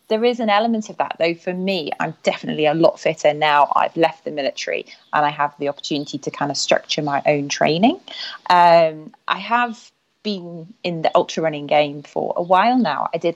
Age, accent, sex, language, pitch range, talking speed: 30-49, British, female, English, 155-200 Hz, 205 wpm